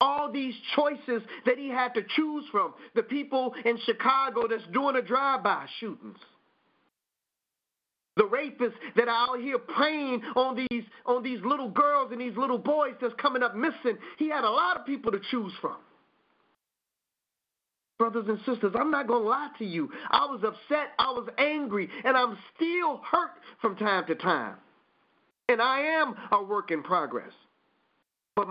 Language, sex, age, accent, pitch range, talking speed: English, male, 40-59, American, 225-275 Hz, 165 wpm